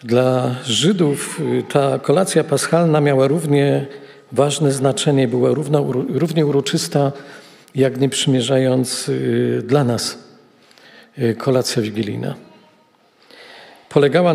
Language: Polish